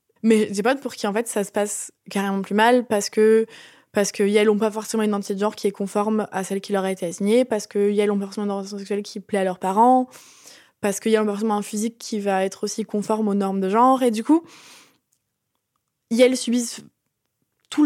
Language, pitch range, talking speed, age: French, 205-235 Hz, 235 wpm, 20-39